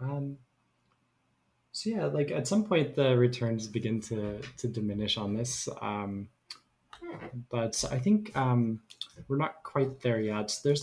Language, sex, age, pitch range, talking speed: English, male, 20-39, 110-135 Hz, 145 wpm